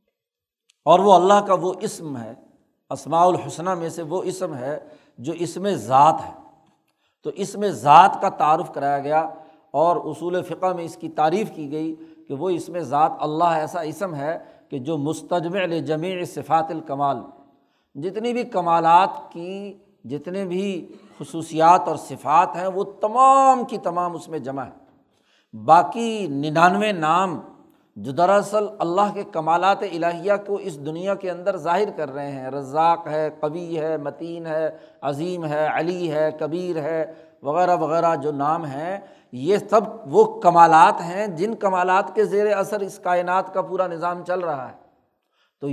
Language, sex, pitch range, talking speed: Urdu, male, 155-195 Hz, 160 wpm